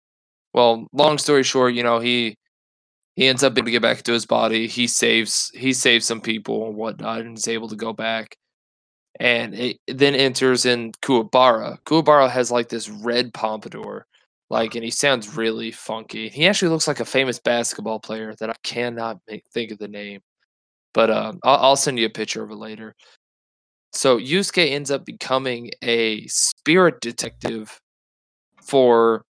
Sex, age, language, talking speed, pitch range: male, 20-39, English, 180 wpm, 110-125 Hz